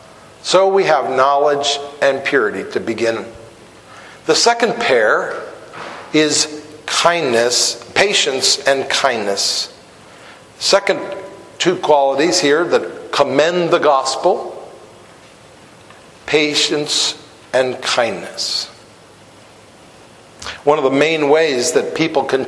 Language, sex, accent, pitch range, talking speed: English, male, American, 150-210 Hz, 95 wpm